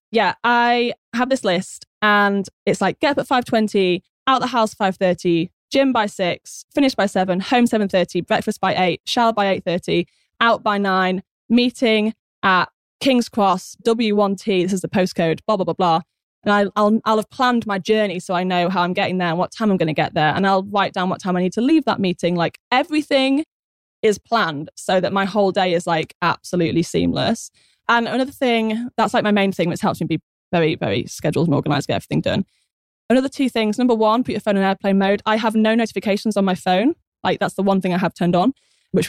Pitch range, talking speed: 185-235 Hz, 215 wpm